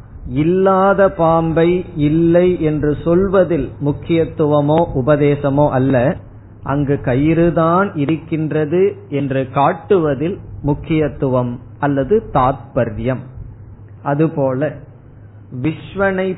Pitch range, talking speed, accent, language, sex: 130-170 Hz, 60 wpm, native, Tamil, male